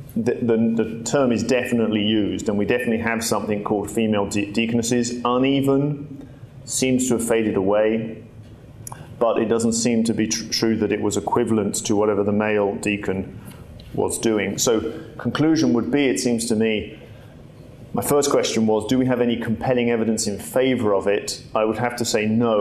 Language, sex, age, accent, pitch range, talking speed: English, male, 30-49, British, 110-130 Hz, 175 wpm